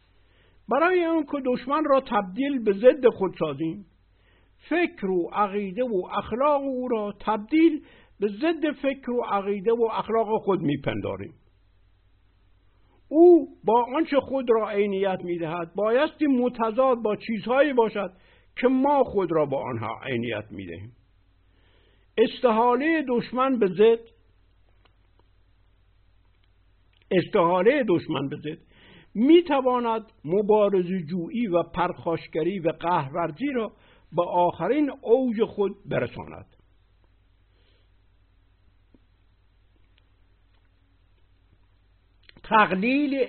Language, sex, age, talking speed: Persian, male, 60-79, 95 wpm